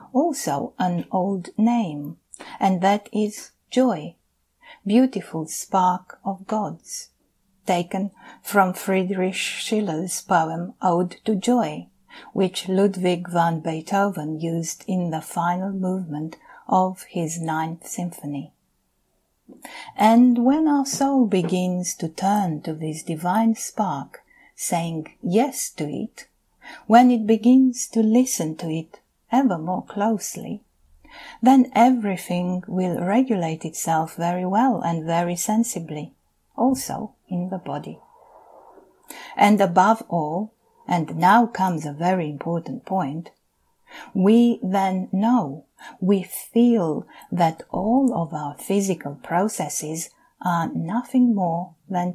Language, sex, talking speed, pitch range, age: English, female, 110 wpm, 170-225 Hz, 50-69